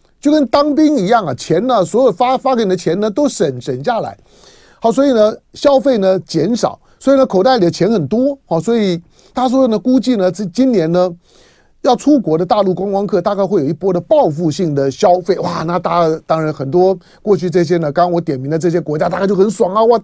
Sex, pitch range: male, 155-220 Hz